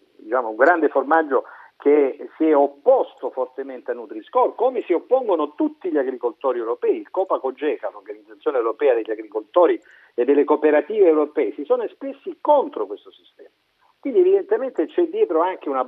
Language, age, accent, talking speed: Italian, 50-69, native, 150 wpm